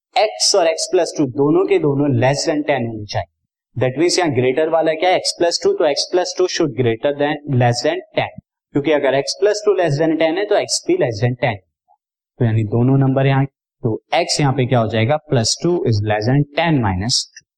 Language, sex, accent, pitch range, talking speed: Hindi, male, native, 120-165 Hz, 60 wpm